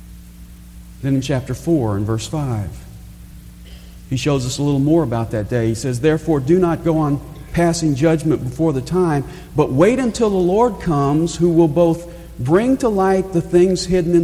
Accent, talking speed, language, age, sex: American, 185 wpm, English, 50-69, male